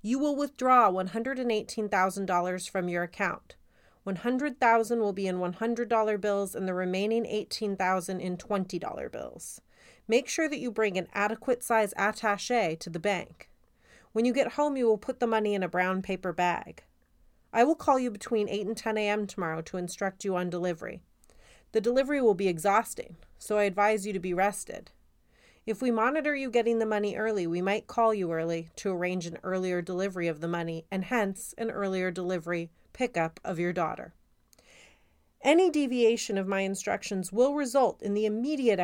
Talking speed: 175 wpm